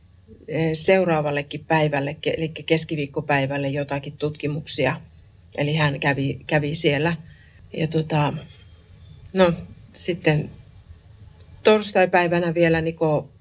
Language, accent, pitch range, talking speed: Finnish, native, 140-165 Hz, 80 wpm